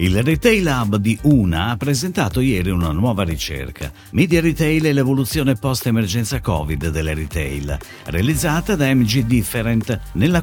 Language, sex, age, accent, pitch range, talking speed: Italian, male, 50-69, native, 90-145 Hz, 140 wpm